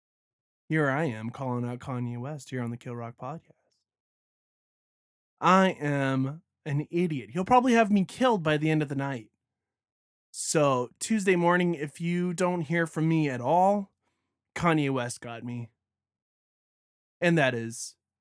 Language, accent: English, American